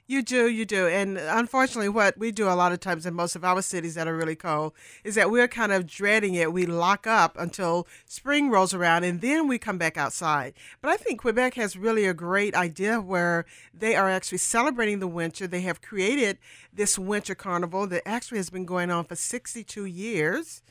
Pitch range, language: 180-240 Hz, English